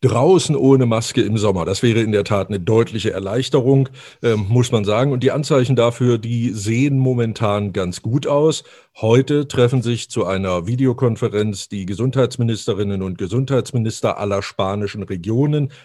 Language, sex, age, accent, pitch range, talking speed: German, male, 50-69, German, 105-130 Hz, 150 wpm